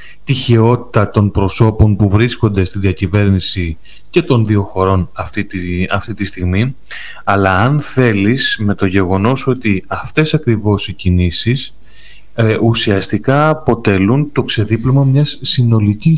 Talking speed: 125 wpm